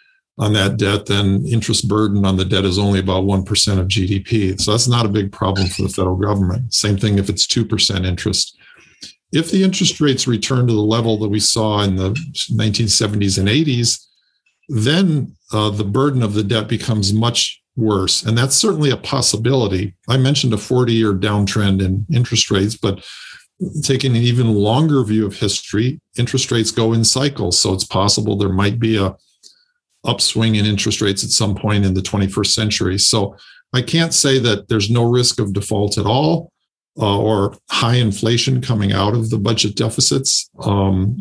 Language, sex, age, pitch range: English, male, 50-69, 100-120 Hz